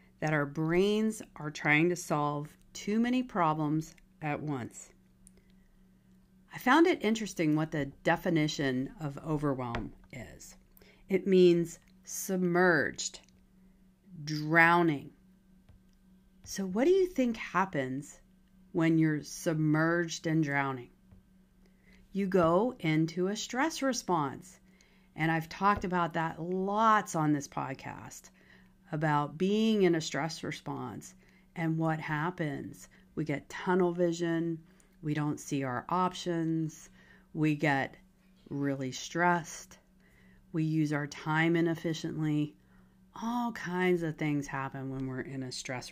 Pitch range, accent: 150-190 Hz, American